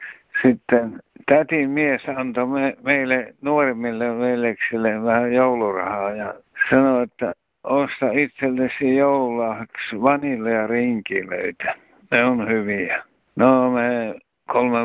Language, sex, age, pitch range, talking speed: Finnish, male, 60-79, 110-125 Hz, 100 wpm